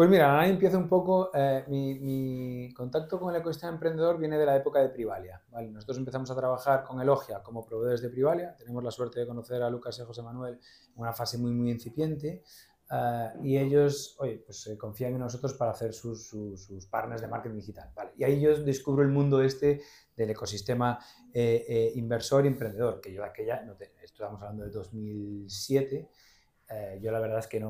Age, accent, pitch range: 30-49, Spanish, 115-145 Hz